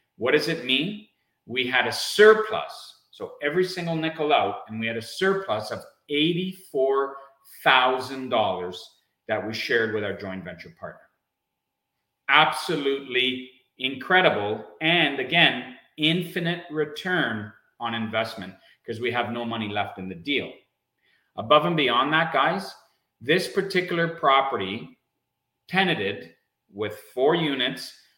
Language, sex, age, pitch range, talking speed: English, male, 40-59, 105-165 Hz, 120 wpm